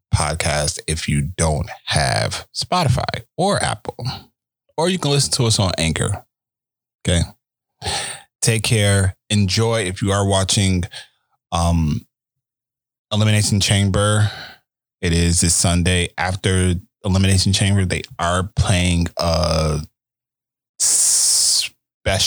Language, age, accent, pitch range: English, 20-39, American, 85-110 Hz